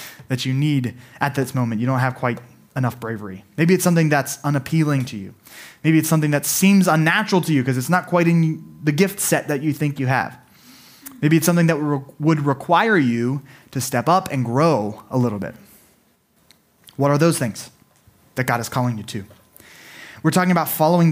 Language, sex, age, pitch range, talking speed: English, male, 20-39, 115-165 Hz, 195 wpm